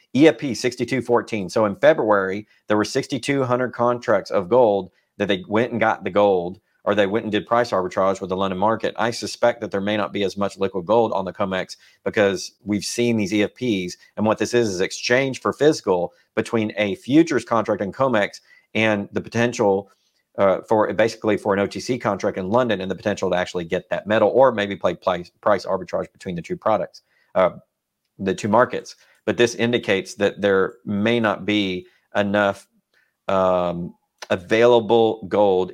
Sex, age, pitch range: male, 40-59, 100-120 Hz